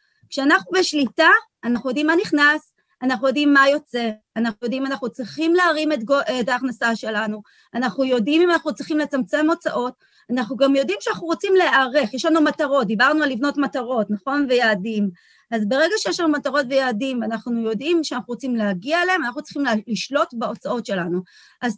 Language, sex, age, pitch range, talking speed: Hebrew, female, 30-49, 240-315 Hz, 160 wpm